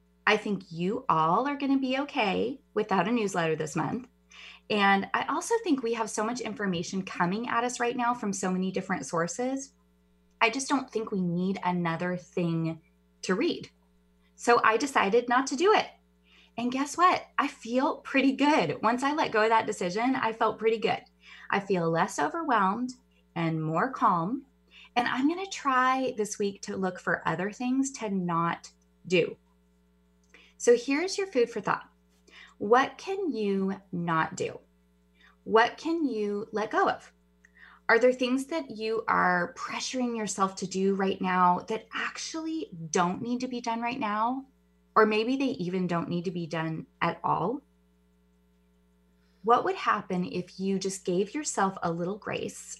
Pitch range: 160-245 Hz